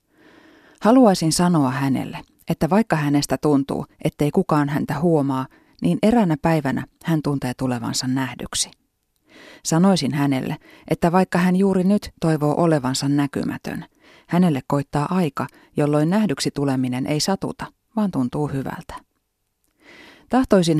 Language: Finnish